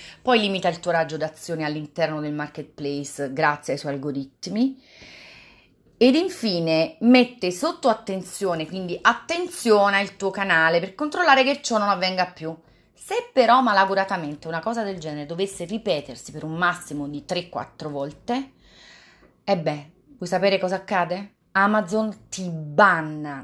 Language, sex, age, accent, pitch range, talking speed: Italian, female, 30-49, native, 155-215 Hz, 140 wpm